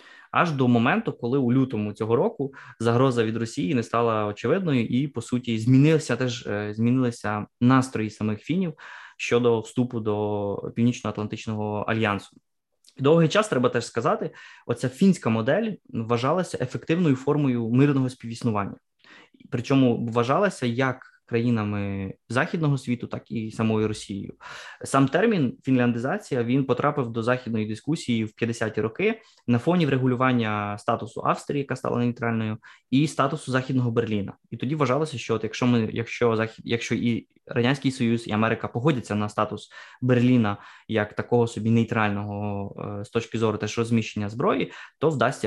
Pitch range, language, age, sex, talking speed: 110-130 Hz, Ukrainian, 20-39, male, 135 wpm